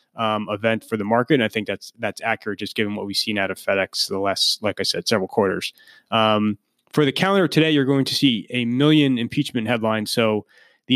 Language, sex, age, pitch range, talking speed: English, male, 30-49, 120-150 Hz, 225 wpm